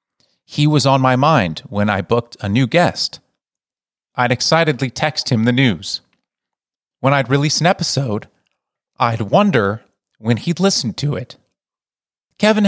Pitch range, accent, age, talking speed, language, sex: 105-140 Hz, American, 30-49, 140 wpm, English, male